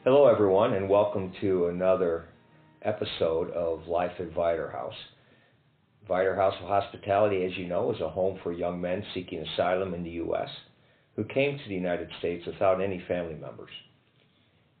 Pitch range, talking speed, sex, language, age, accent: 90-120 Hz, 160 wpm, male, English, 50-69, American